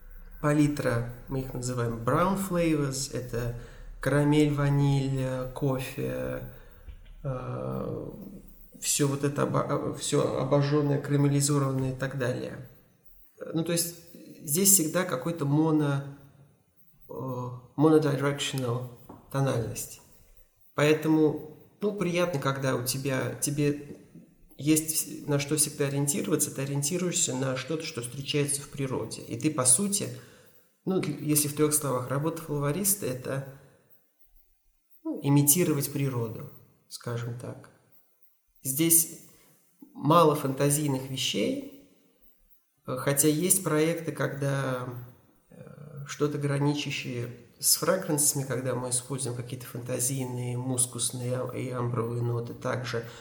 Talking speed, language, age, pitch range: 100 wpm, Russian, 30-49, 125-150 Hz